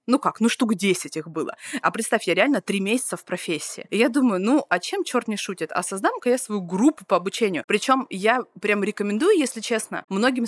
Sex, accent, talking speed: female, native, 220 wpm